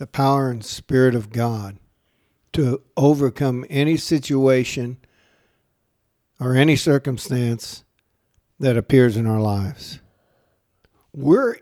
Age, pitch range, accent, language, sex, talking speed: 60-79, 125-175 Hz, American, English, male, 100 wpm